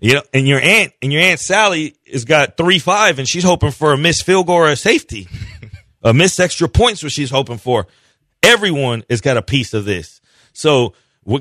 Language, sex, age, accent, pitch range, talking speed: English, male, 30-49, American, 125-160 Hz, 210 wpm